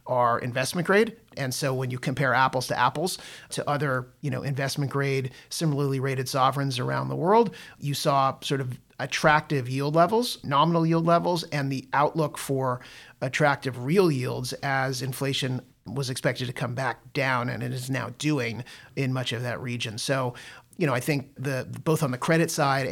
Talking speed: 180 wpm